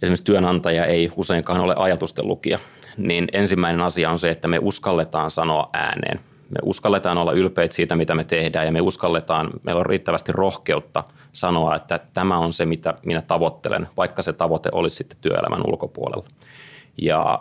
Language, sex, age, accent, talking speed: Finnish, male, 30-49, native, 160 wpm